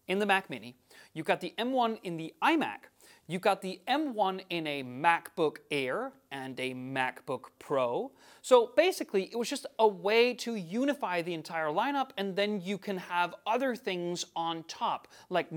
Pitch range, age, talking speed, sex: 165-230 Hz, 30-49, 175 wpm, male